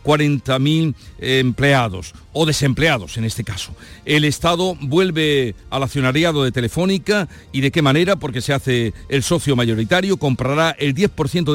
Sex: male